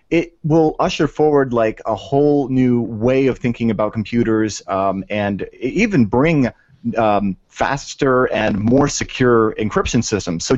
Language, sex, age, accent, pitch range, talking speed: English, male, 30-49, American, 110-145 Hz, 140 wpm